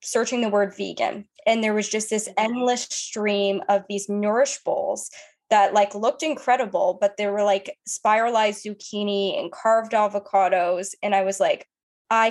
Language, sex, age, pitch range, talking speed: English, female, 10-29, 195-225 Hz, 160 wpm